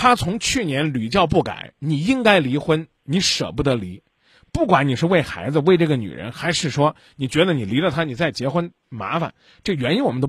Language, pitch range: Chinese, 145-200 Hz